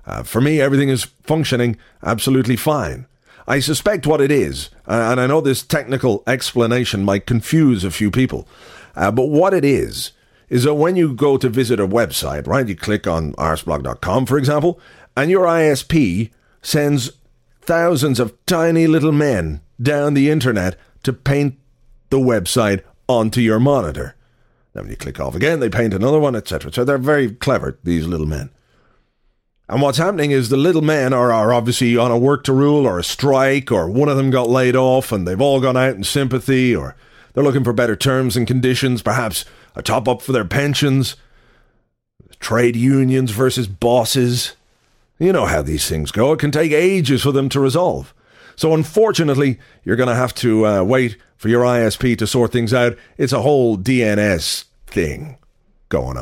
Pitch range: 115-140 Hz